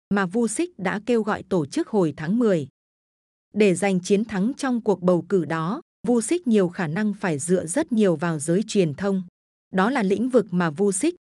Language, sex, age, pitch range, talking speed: Vietnamese, female, 20-39, 185-230 Hz, 205 wpm